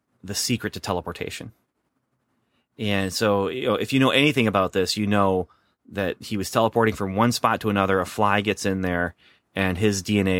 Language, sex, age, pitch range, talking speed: English, male, 30-49, 100-120 Hz, 180 wpm